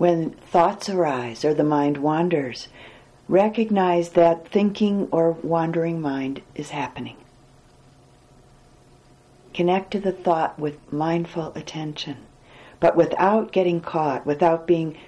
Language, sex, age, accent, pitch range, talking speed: English, female, 50-69, American, 120-165 Hz, 110 wpm